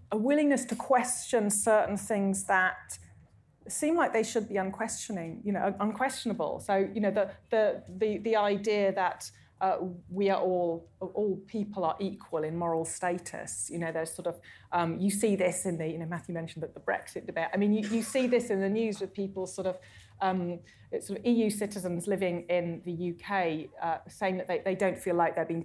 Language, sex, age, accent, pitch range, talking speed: English, female, 30-49, British, 170-220 Hz, 205 wpm